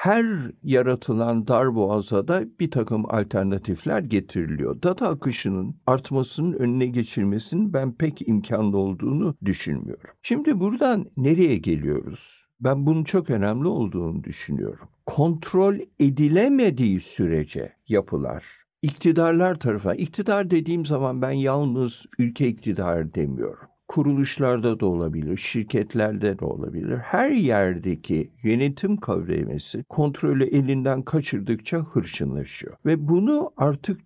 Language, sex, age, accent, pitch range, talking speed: Turkish, male, 50-69, native, 110-170 Hz, 105 wpm